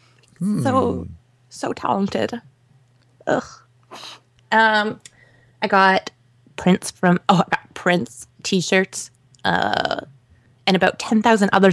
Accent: American